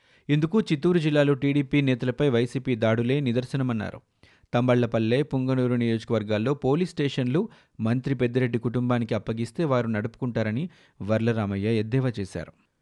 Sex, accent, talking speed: male, native, 105 wpm